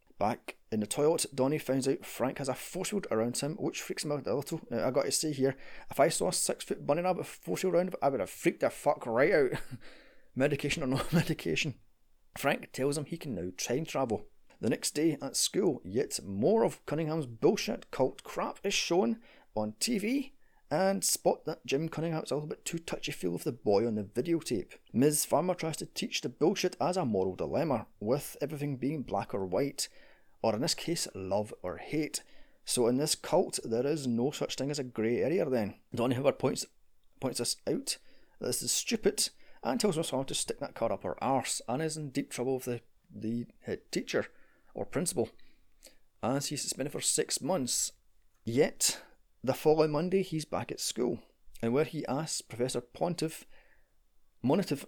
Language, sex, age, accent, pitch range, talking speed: English, male, 30-49, British, 125-165 Hz, 195 wpm